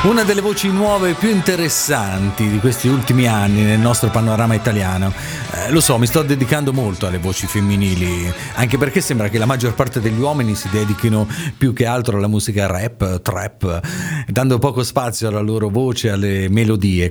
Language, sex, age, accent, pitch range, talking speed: Italian, male, 40-59, native, 100-130 Hz, 180 wpm